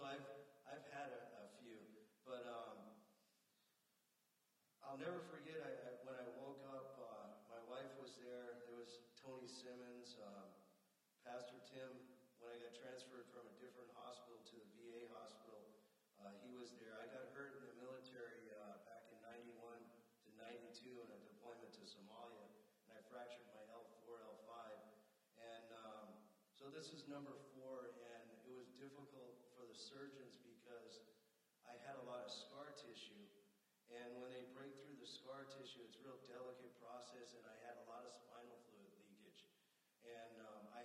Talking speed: 155 wpm